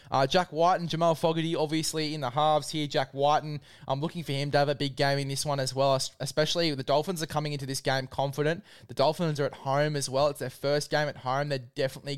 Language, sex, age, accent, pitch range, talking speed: English, male, 20-39, Australian, 130-155 Hz, 255 wpm